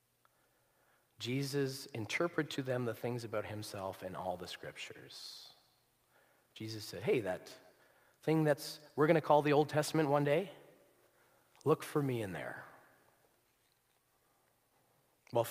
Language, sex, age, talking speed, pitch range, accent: English, male, 40-59, 125 wpm, 115-150 Hz, American